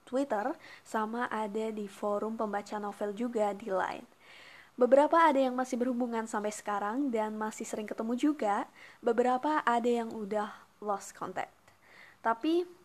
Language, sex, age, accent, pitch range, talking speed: Indonesian, female, 20-39, native, 205-245 Hz, 135 wpm